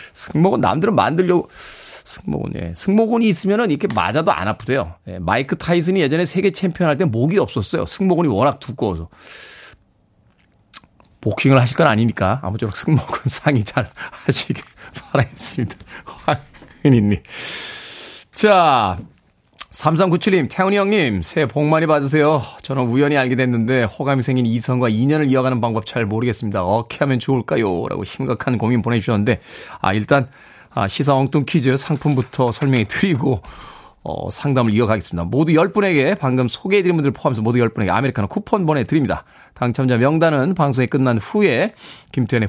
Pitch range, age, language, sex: 120-175 Hz, 40-59, Korean, male